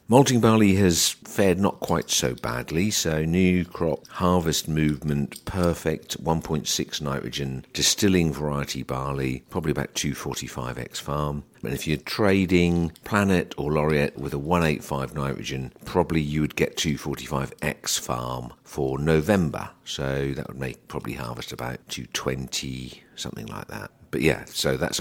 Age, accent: 50-69, British